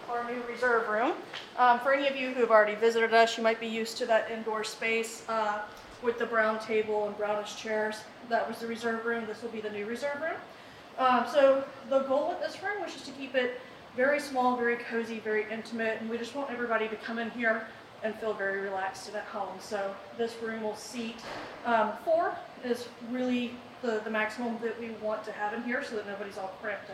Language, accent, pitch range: English, American, 215-250 Hz